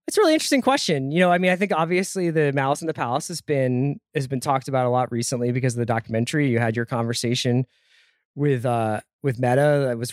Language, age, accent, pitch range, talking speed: English, 20-39, American, 120-145 Hz, 235 wpm